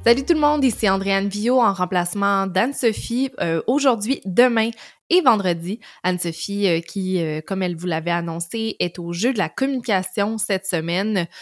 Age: 20-39